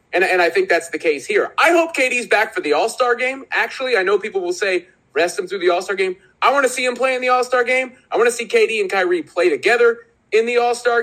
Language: English